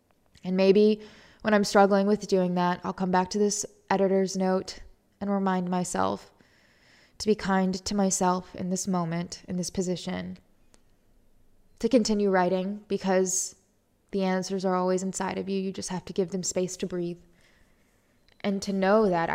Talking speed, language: 165 wpm, English